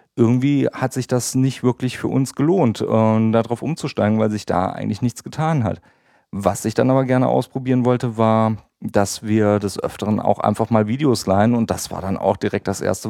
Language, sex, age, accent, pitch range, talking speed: German, male, 40-59, German, 105-130 Hz, 200 wpm